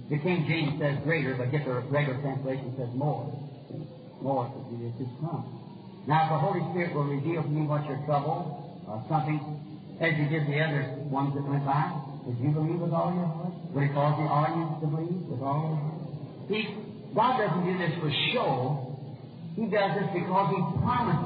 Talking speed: 205 wpm